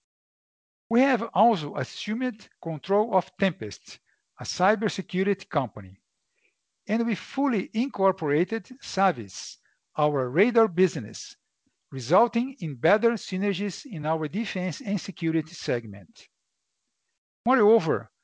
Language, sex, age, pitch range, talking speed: Portuguese, male, 50-69, 160-225 Hz, 95 wpm